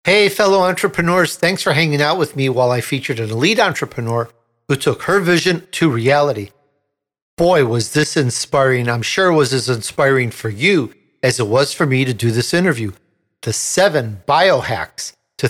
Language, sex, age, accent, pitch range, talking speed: English, male, 50-69, American, 135-185 Hz, 180 wpm